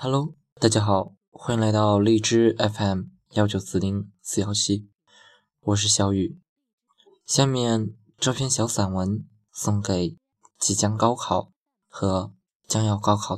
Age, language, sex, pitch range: 20-39, Chinese, male, 100-155 Hz